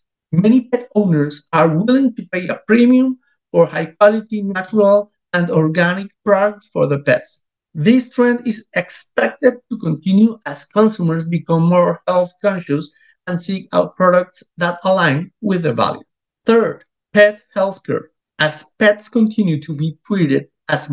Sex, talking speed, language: male, 145 wpm, English